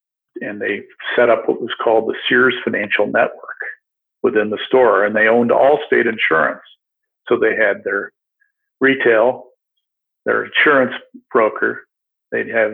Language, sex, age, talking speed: English, male, 50-69, 140 wpm